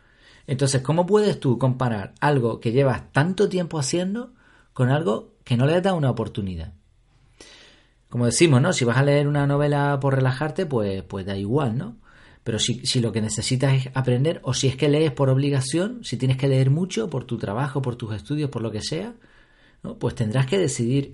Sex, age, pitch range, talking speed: male, 40-59, 125-160 Hz, 200 wpm